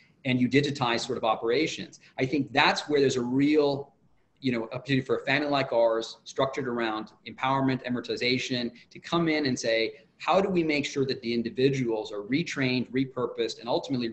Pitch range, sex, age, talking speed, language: 120-150 Hz, male, 30-49, 185 wpm, English